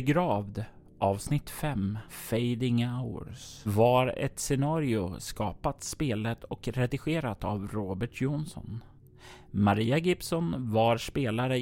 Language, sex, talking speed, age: Swedish, male, 100 wpm, 30-49